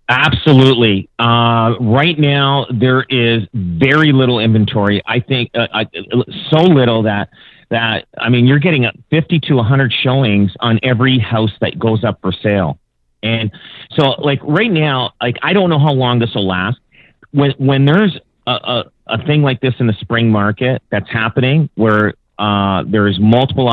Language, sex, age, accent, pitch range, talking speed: English, male, 40-59, American, 110-140 Hz, 170 wpm